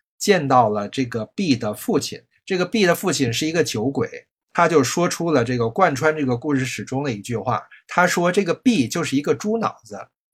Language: Chinese